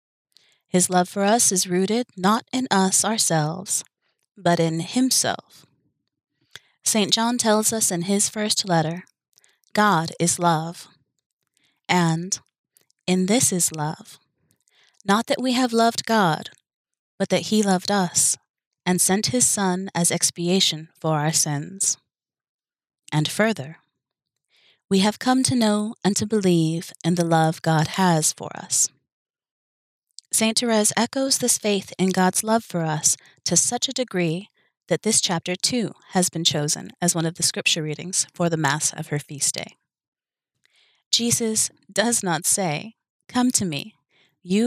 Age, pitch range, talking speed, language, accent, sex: 30-49, 165-215 Hz, 145 wpm, English, American, female